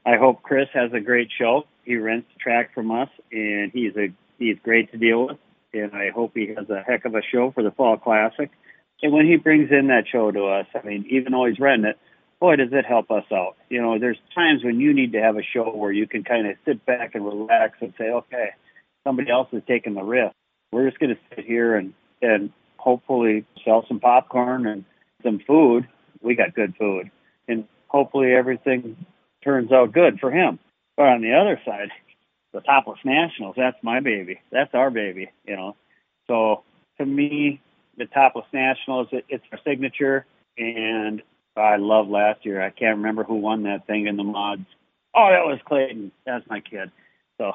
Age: 50-69